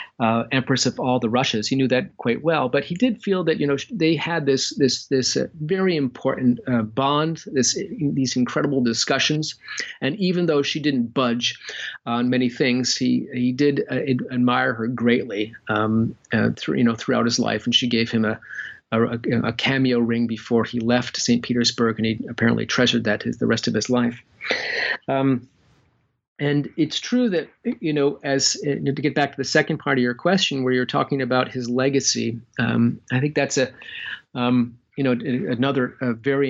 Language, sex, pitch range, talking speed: English, male, 120-145 Hz, 195 wpm